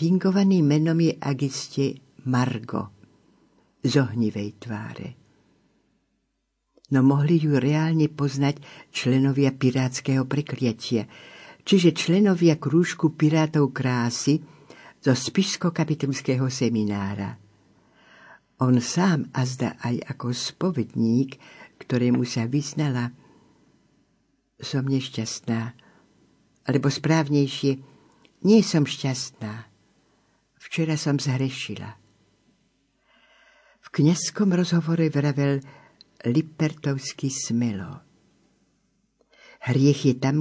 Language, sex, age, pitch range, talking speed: Slovak, female, 60-79, 120-155 Hz, 75 wpm